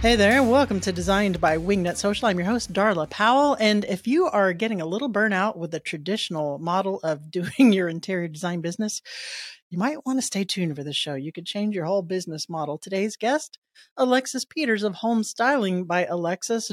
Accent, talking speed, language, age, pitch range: American, 205 wpm, English, 40-59, 180-235 Hz